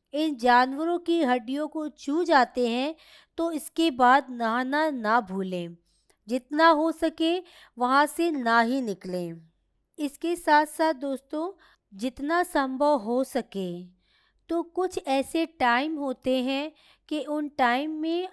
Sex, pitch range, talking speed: female, 250-325 Hz, 135 wpm